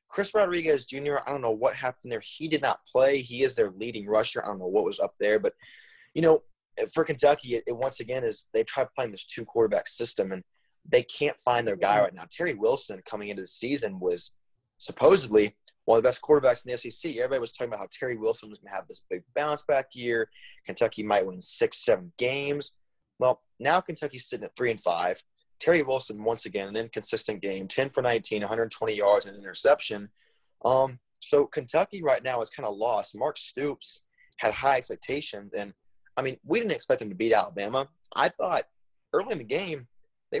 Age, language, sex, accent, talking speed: 20-39, English, male, American, 210 wpm